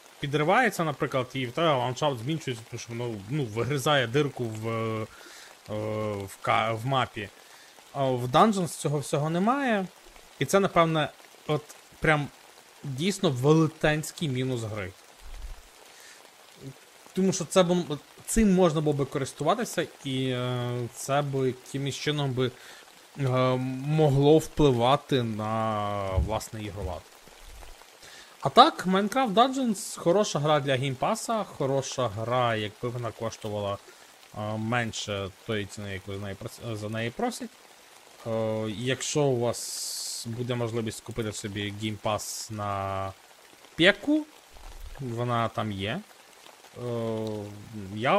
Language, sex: Ukrainian, male